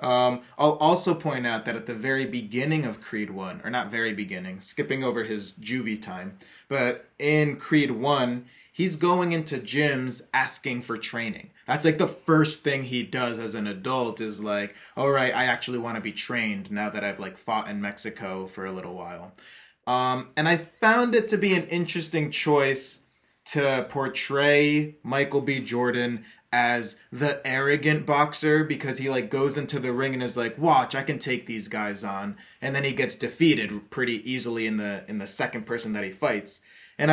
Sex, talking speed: male, 190 wpm